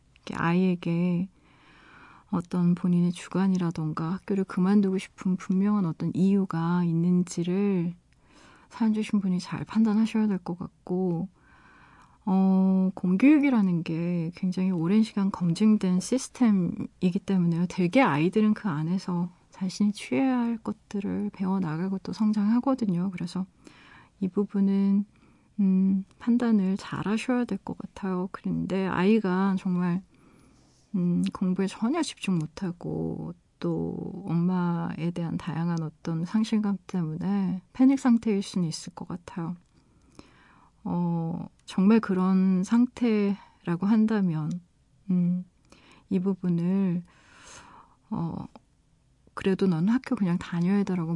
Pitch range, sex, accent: 175-205 Hz, female, native